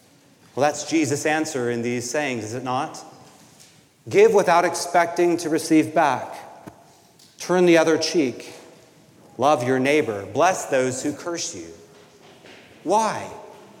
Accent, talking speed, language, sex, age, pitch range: American, 125 wpm, English, male, 40-59, 130-175 Hz